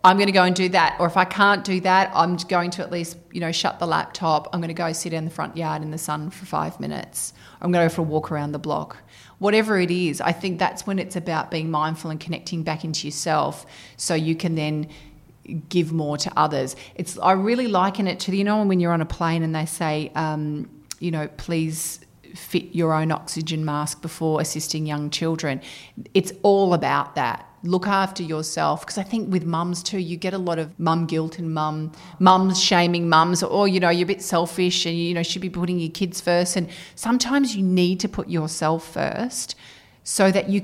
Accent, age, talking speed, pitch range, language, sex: Australian, 30-49, 225 wpm, 155-185 Hz, English, female